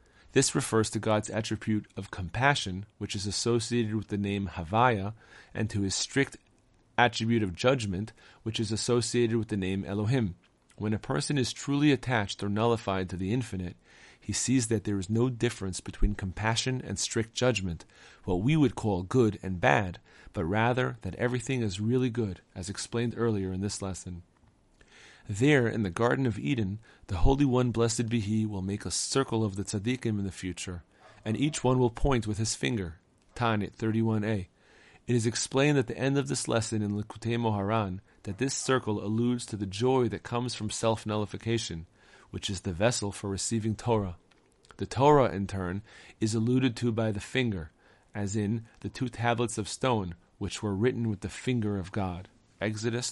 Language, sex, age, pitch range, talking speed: English, male, 40-59, 100-120 Hz, 180 wpm